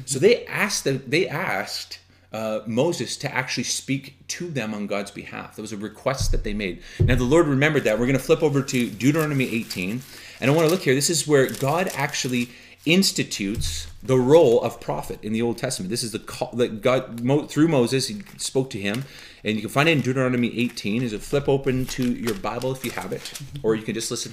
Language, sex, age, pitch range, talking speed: English, male, 30-49, 110-140 Hz, 225 wpm